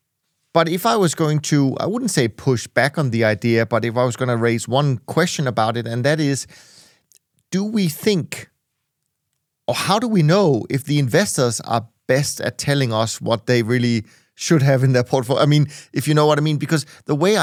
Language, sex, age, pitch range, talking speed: English, male, 30-49, 120-150 Hz, 215 wpm